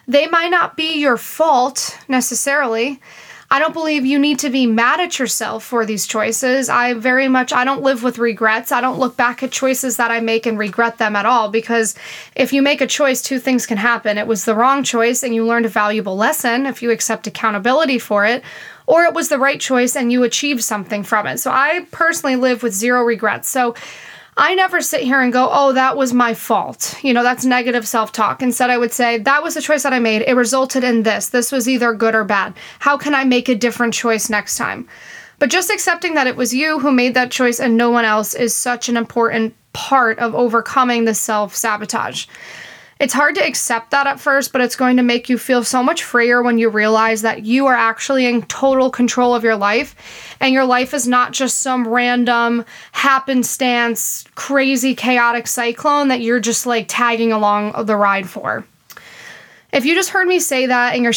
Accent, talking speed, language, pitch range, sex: American, 215 wpm, English, 230-270 Hz, female